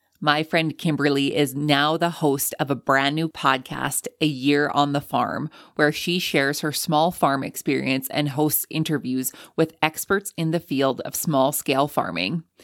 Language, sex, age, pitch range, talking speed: English, female, 20-39, 135-160 Hz, 170 wpm